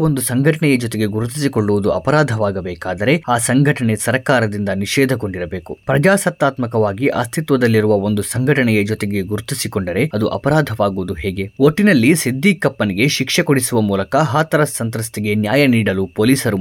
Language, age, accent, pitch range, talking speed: Kannada, 20-39, native, 105-140 Hz, 105 wpm